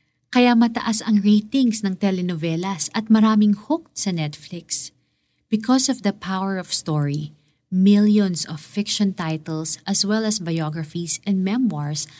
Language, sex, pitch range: Filipino, female, 150-200 Hz